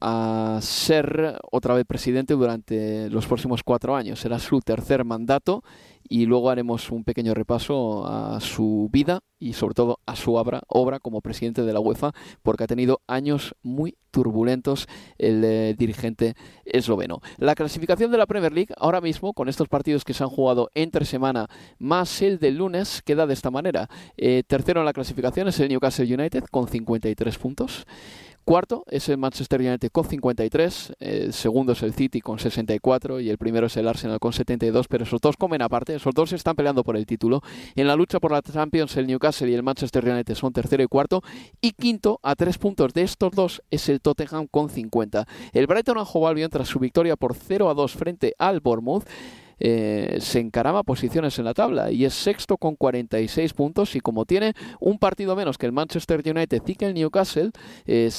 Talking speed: 190 wpm